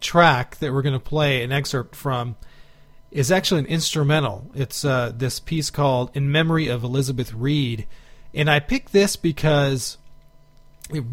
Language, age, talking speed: English, 40-59, 155 wpm